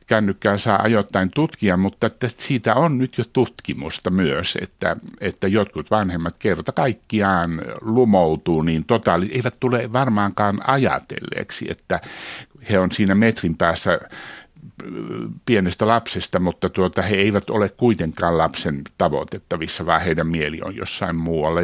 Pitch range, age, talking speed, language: 85-115 Hz, 60-79, 130 wpm, Finnish